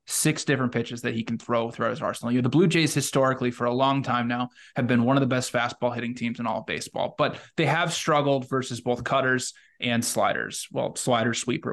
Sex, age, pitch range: male, 20-39, 120-135 Hz